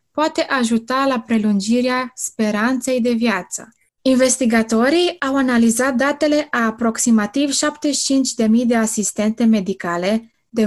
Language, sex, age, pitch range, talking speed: Romanian, female, 20-39, 220-260 Hz, 100 wpm